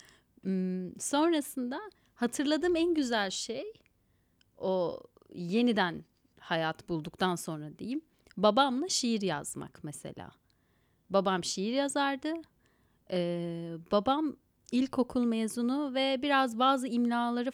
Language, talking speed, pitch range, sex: Turkish, 90 wpm, 175-265 Hz, female